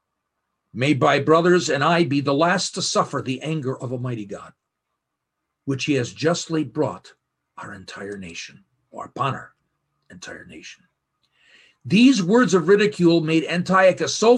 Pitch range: 125-165 Hz